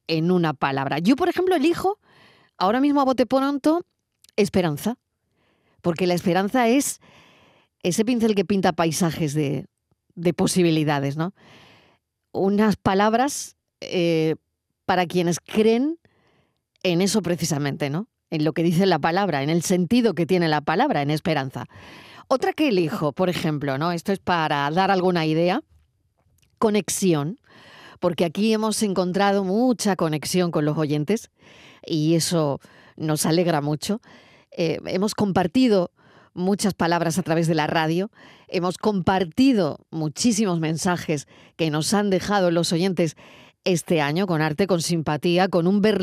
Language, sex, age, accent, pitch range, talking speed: Spanish, female, 40-59, Spanish, 165-210 Hz, 140 wpm